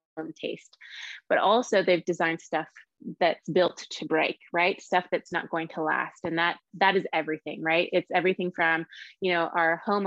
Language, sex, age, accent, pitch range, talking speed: English, female, 20-39, American, 170-200 Hz, 180 wpm